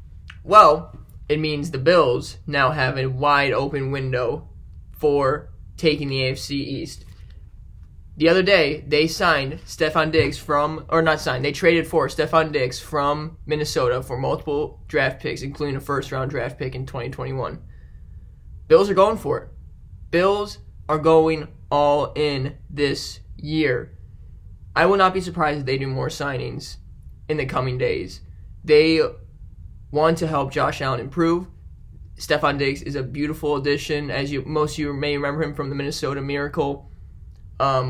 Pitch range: 120-155 Hz